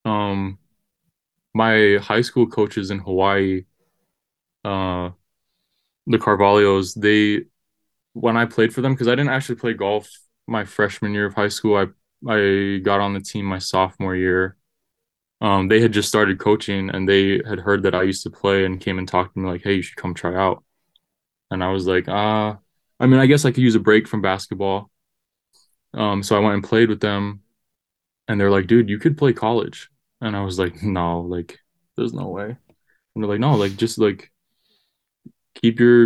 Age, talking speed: 20-39, 195 wpm